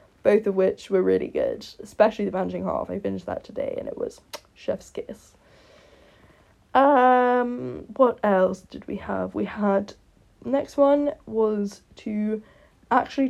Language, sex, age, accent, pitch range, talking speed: English, female, 10-29, British, 195-275 Hz, 145 wpm